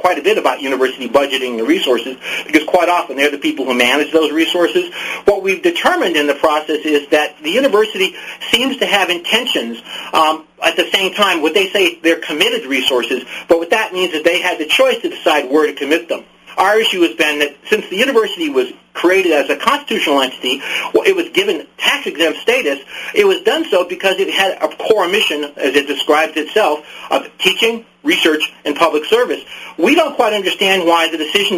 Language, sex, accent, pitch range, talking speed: English, male, American, 150-220 Hz, 200 wpm